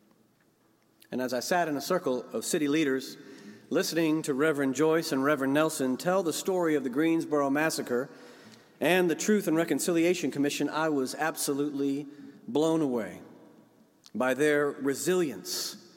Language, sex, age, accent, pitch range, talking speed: English, male, 40-59, American, 145-215 Hz, 145 wpm